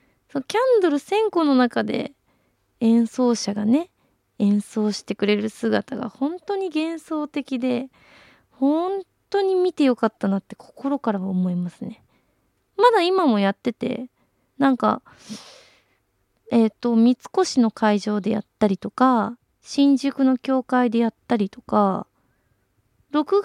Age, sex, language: 20-39, female, Japanese